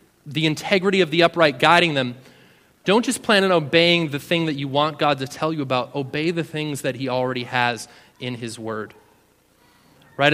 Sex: male